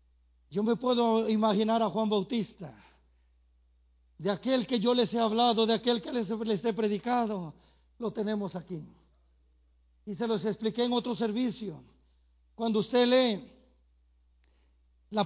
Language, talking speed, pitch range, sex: Spanish, 140 wpm, 195-270 Hz, male